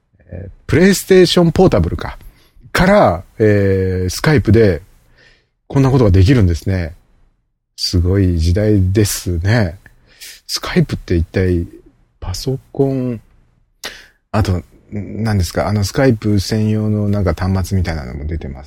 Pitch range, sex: 85-110 Hz, male